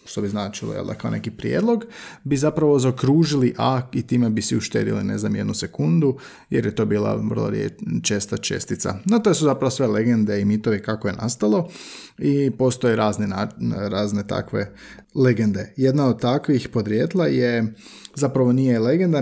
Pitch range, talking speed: 110-135 Hz, 170 wpm